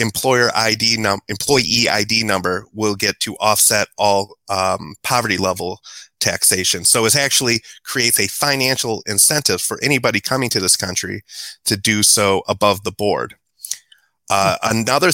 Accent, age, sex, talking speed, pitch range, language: American, 30-49, male, 145 wpm, 105-135 Hz, English